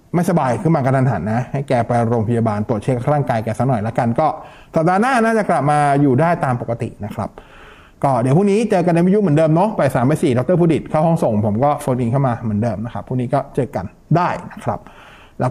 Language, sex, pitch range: Thai, male, 130-165 Hz